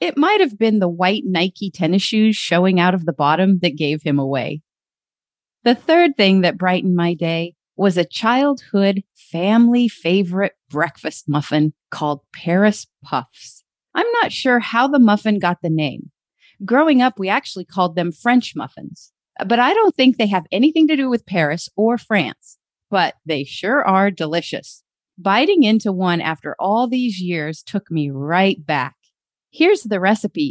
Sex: female